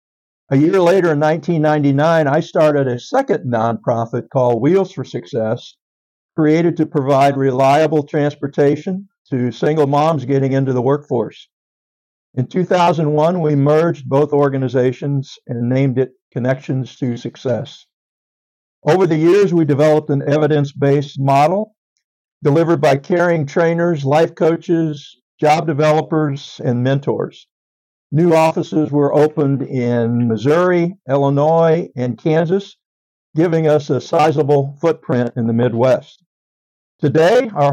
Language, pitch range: English, 130-165 Hz